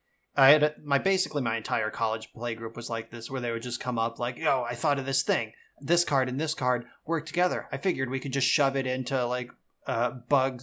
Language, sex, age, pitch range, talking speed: English, male, 30-49, 125-150 Hz, 245 wpm